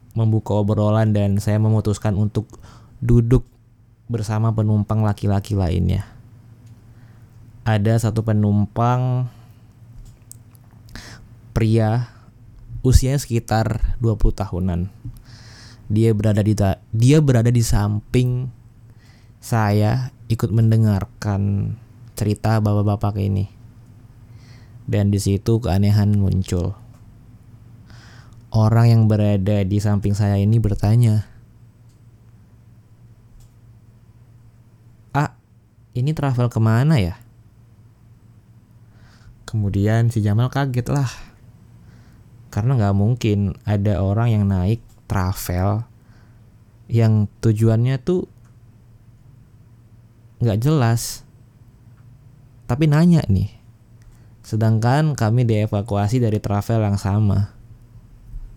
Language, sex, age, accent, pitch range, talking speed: Indonesian, male, 20-39, native, 105-115 Hz, 80 wpm